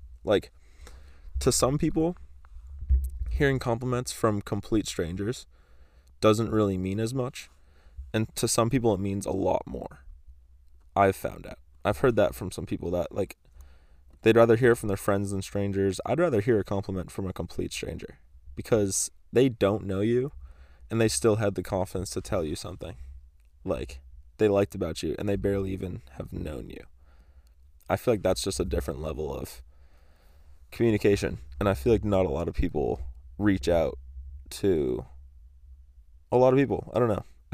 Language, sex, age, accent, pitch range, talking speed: English, male, 20-39, American, 70-100 Hz, 175 wpm